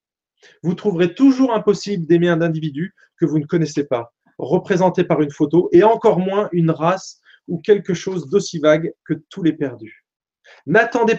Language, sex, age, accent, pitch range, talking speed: French, male, 30-49, French, 155-200 Hz, 165 wpm